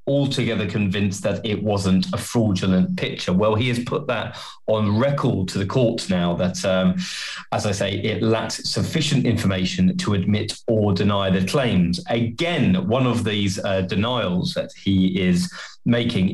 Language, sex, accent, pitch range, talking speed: English, male, British, 100-125 Hz, 160 wpm